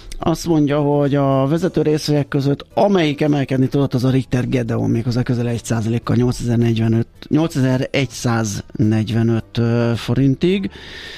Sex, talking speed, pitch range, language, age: male, 105 wpm, 115-140 Hz, Hungarian, 30-49